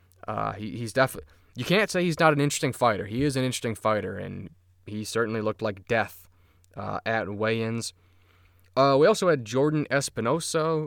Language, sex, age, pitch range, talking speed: English, male, 20-39, 100-125 Hz, 175 wpm